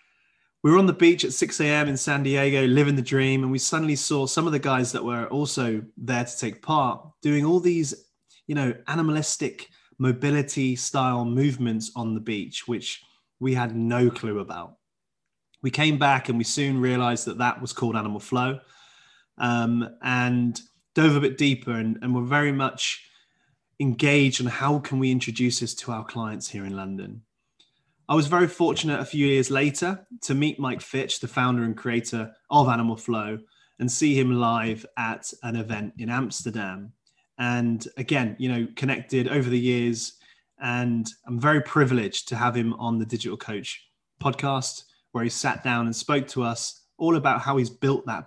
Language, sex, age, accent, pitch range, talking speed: English, male, 20-39, British, 115-140 Hz, 180 wpm